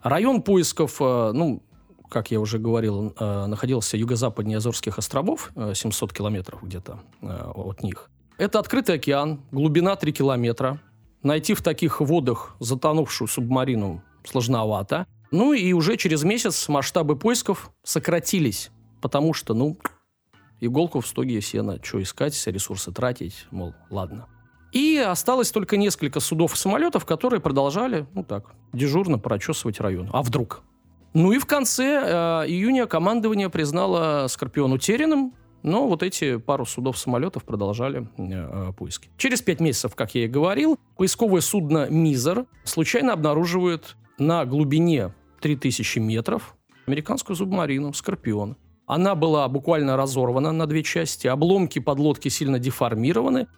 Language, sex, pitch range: Russian, male, 115-170 Hz